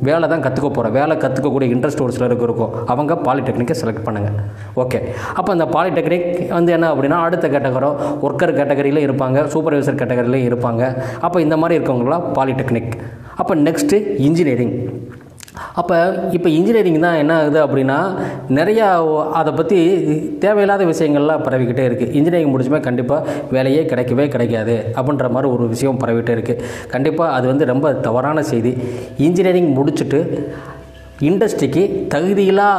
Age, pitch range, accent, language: 20-39, 125-160 Hz, native, Tamil